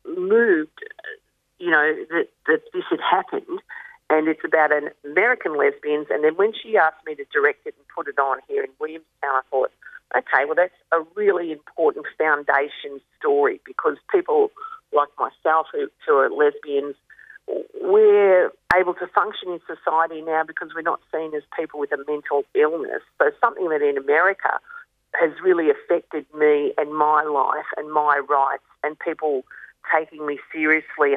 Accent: Australian